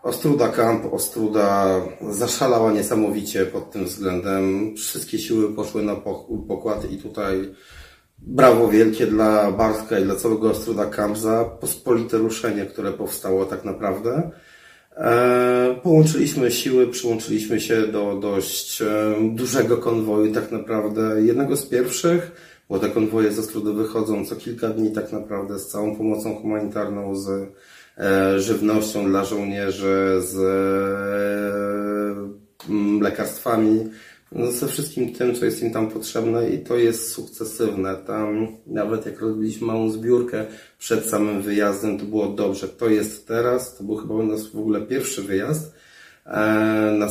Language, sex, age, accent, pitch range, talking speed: Polish, male, 30-49, native, 100-115 Hz, 130 wpm